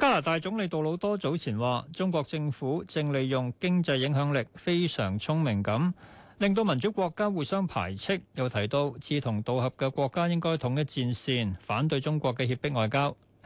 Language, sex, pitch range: Chinese, male, 120-165 Hz